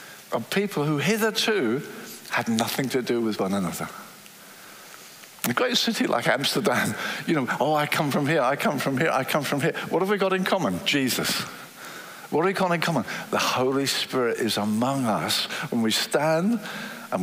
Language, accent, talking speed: English, British, 190 wpm